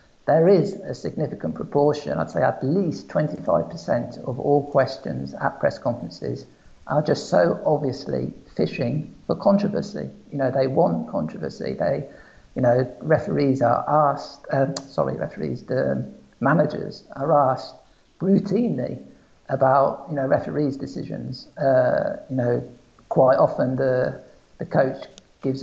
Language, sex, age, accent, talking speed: English, male, 50-69, British, 130 wpm